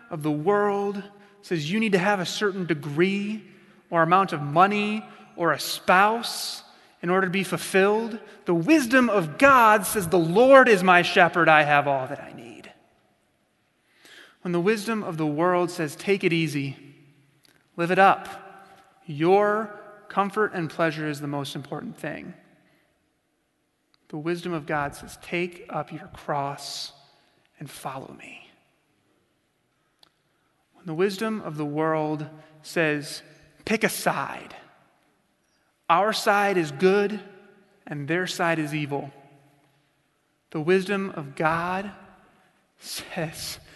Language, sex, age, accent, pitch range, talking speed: English, male, 30-49, American, 155-195 Hz, 130 wpm